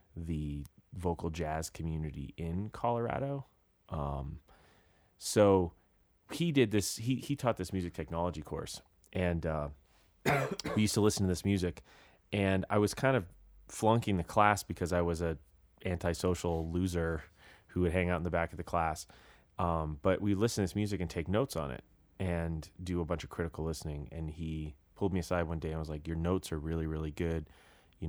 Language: English